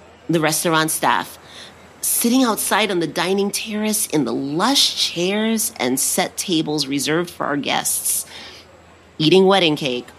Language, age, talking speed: English, 30-49, 135 wpm